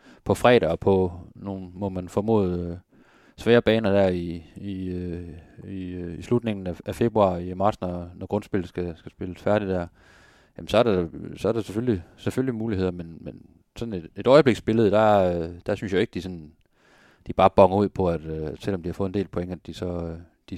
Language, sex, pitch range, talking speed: Danish, male, 85-105 Hz, 200 wpm